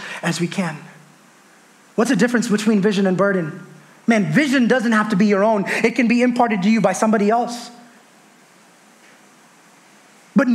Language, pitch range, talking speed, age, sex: English, 230-295 Hz, 160 wpm, 20-39, male